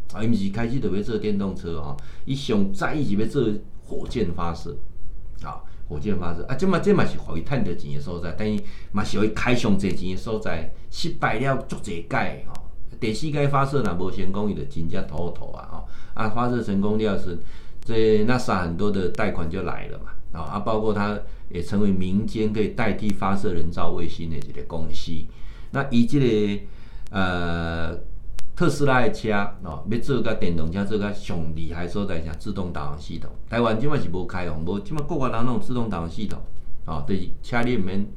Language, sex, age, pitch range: Chinese, male, 50-69, 85-110 Hz